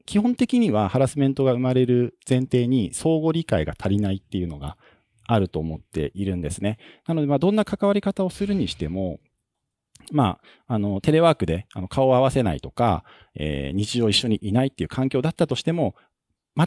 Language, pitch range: Japanese, 90-140 Hz